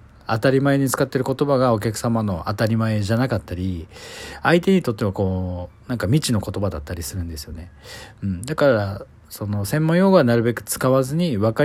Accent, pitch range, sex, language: native, 100-140 Hz, male, Japanese